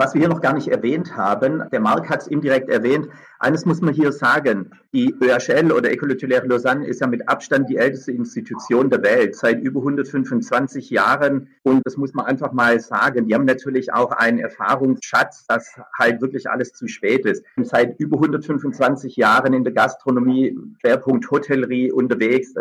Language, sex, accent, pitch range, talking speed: German, male, German, 125-145 Hz, 180 wpm